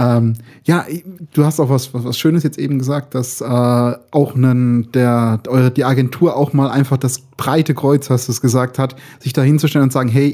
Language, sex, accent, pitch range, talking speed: German, male, German, 130-150 Hz, 195 wpm